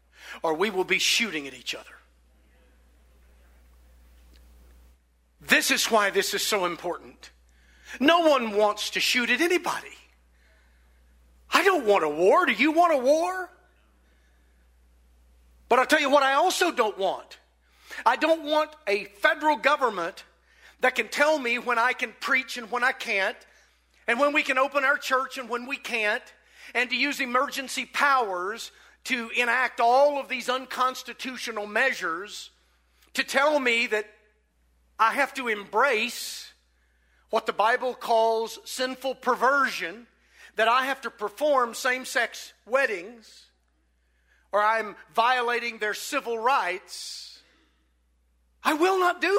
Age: 50-69